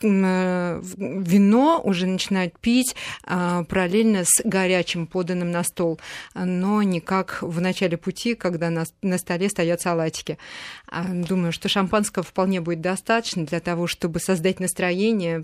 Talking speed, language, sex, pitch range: 130 wpm, Russian, female, 175-195 Hz